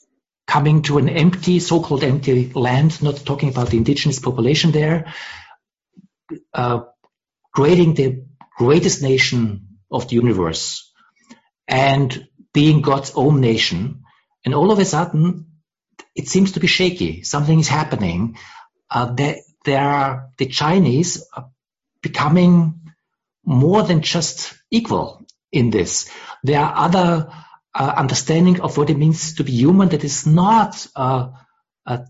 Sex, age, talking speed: male, 60-79, 135 wpm